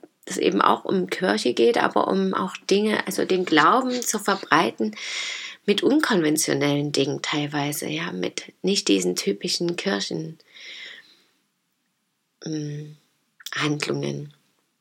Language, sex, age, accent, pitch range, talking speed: German, female, 30-49, German, 155-205 Hz, 100 wpm